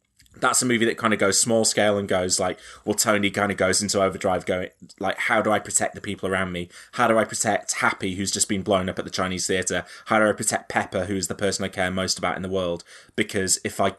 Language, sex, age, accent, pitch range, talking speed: English, male, 20-39, British, 95-105 Hz, 260 wpm